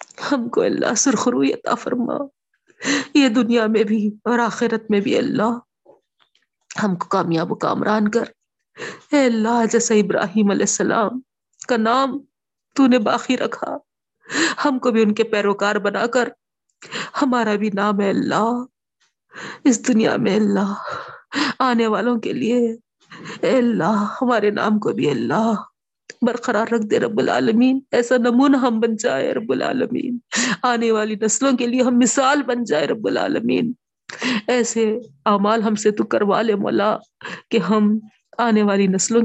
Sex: female